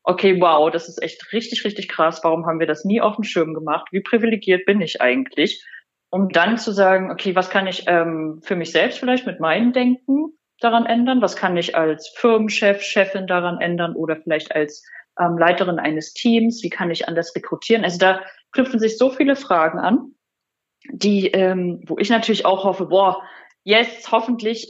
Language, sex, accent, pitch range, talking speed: German, female, German, 165-215 Hz, 190 wpm